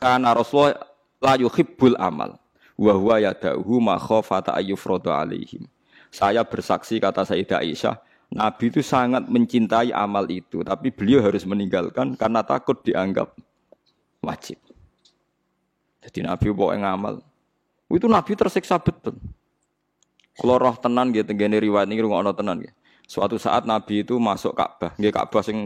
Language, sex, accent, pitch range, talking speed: Indonesian, male, native, 105-130 Hz, 90 wpm